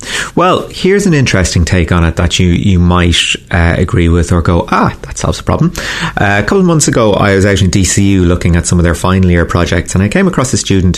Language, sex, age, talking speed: English, male, 30-49, 250 wpm